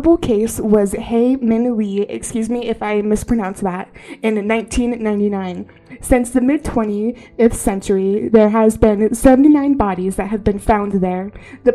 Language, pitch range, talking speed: English, 205-245 Hz, 145 wpm